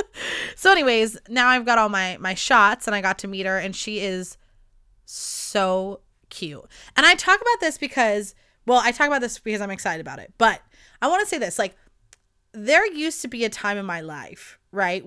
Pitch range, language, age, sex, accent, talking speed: 195-285 Hz, English, 20-39, female, American, 210 wpm